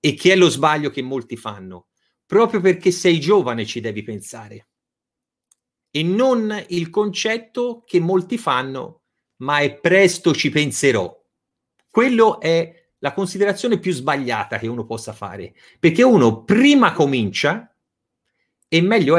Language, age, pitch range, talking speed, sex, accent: Italian, 30-49, 125-195 Hz, 135 wpm, male, native